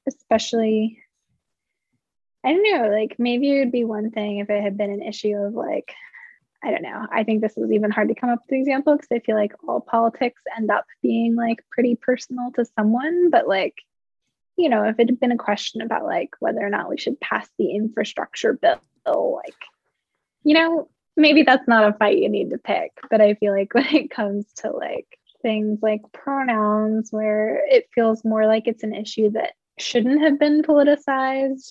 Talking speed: 200 wpm